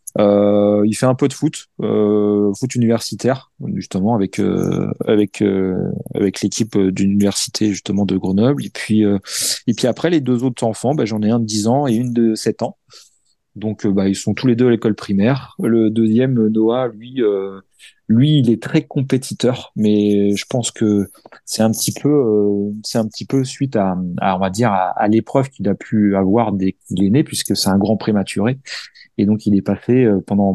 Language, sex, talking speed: French, male, 210 wpm